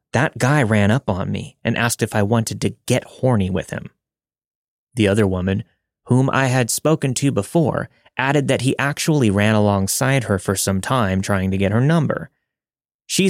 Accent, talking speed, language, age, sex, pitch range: American, 185 wpm, English, 30-49, male, 100-130 Hz